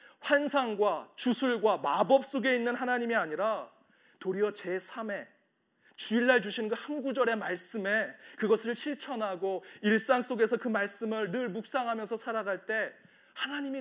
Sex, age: male, 30-49